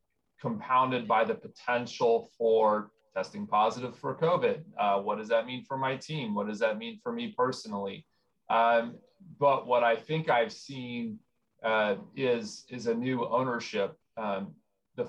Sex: male